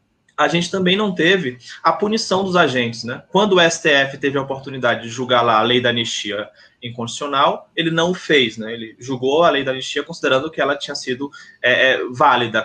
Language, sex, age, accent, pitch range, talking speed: Portuguese, male, 20-39, Brazilian, 125-160 Hz, 205 wpm